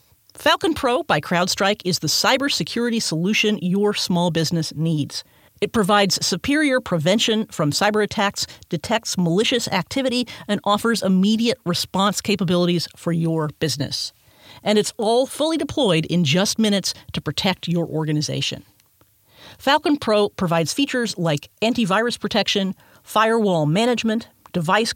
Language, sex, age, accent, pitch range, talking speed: English, female, 50-69, American, 165-225 Hz, 125 wpm